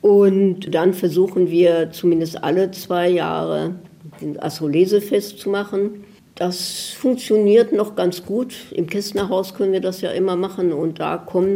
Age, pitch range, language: 60-79, 165-190 Hz, German